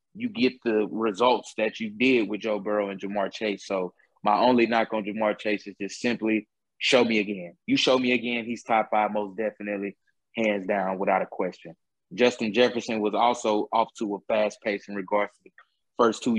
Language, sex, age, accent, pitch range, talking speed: English, male, 20-39, American, 105-135 Hz, 200 wpm